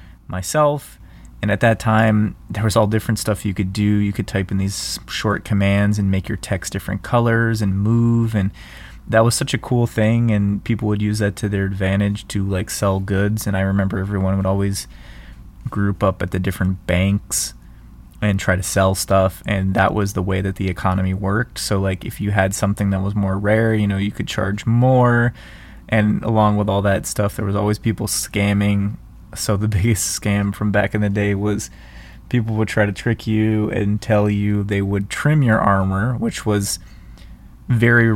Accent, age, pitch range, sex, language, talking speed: American, 20-39, 95-110 Hz, male, English, 200 wpm